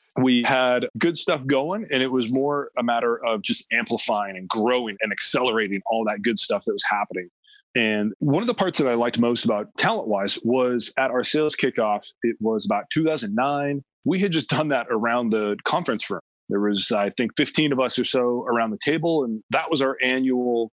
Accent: American